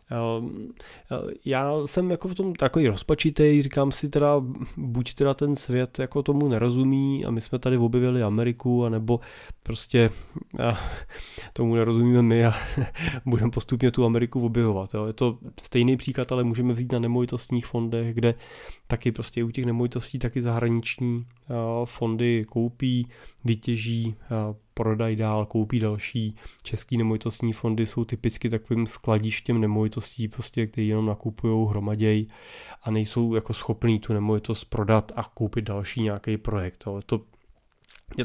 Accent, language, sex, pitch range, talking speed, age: native, Czech, male, 115-130 Hz, 135 wpm, 20-39